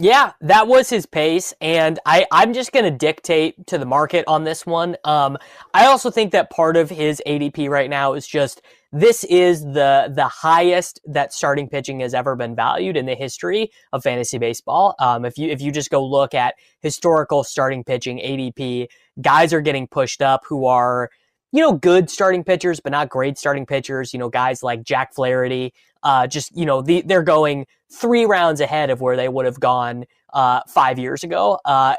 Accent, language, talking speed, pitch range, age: American, English, 200 wpm, 135-170 Hz, 20-39